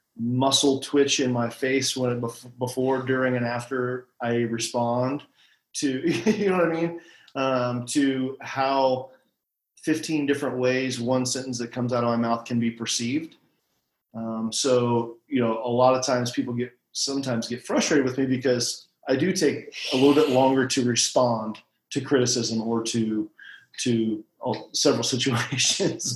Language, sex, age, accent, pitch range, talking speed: English, male, 40-59, American, 120-135 Hz, 155 wpm